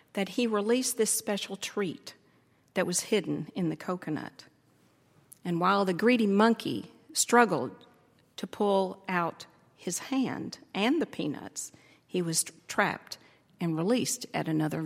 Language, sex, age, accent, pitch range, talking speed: English, female, 50-69, American, 175-245 Hz, 135 wpm